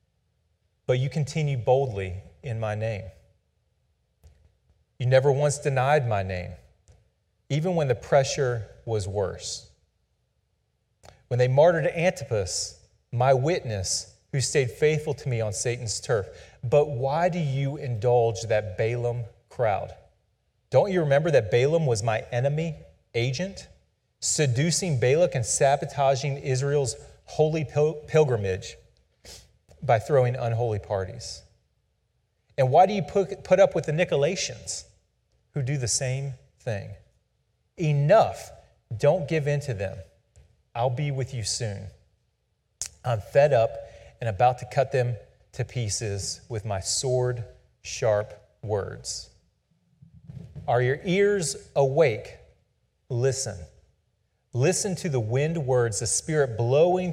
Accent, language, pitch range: American, English, 110-145 Hz